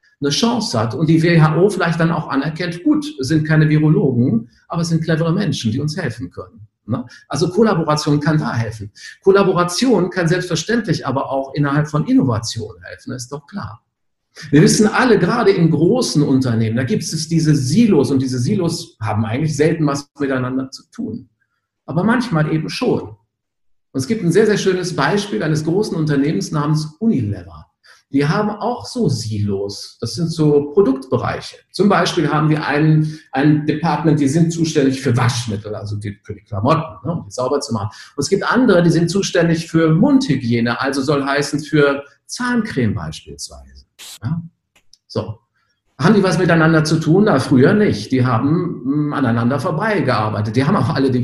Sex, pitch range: male, 125-170 Hz